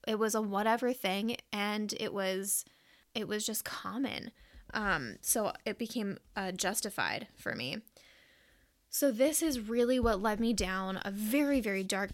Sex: female